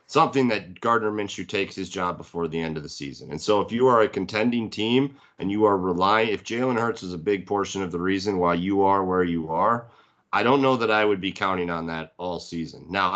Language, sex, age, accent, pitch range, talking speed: English, male, 30-49, American, 90-110 Hz, 245 wpm